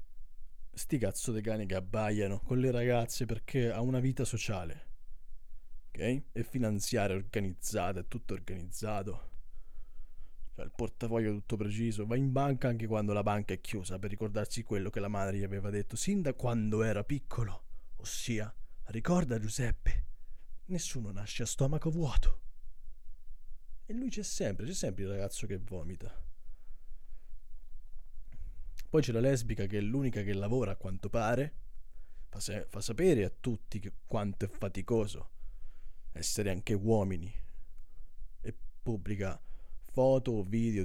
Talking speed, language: 145 wpm, Italian